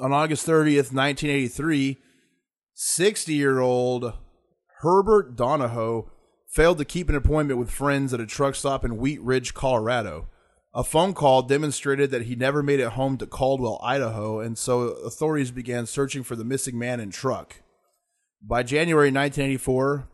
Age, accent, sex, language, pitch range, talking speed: 20-39, American, male, English, 120-150 Hz, 145 wpm